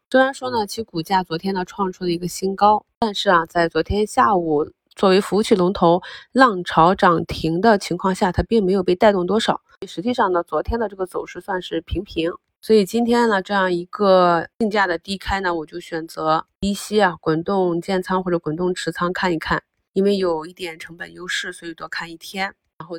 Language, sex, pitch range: Chinese, female, 170-200 Hz